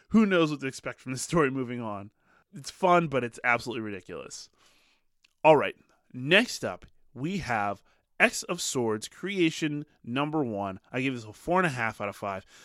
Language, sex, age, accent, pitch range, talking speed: English, male, 20-39, American, 120-175 Hz, 185 wpm